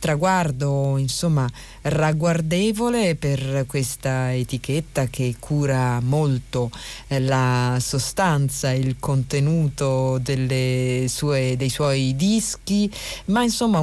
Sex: female